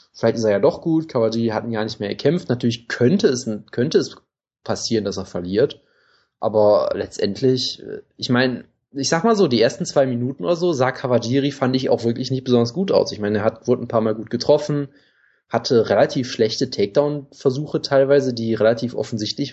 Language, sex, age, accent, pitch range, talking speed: German, male, 20-39, German, 115-140 Hz, 195 wpm